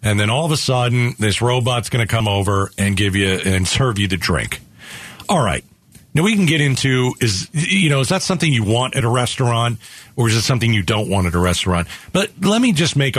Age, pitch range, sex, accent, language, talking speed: 50-69, 115-160 Hz, male, American, English, 240 wpm